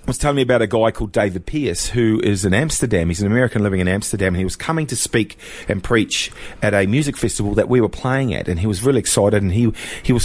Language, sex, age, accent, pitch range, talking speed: English, male, 40-59, Australian, 100-125 Hz, 265 wpm